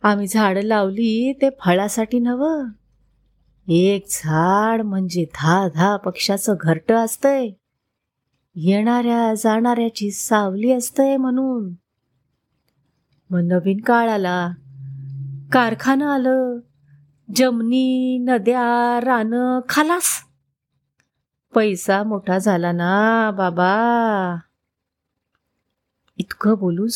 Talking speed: 80 wpm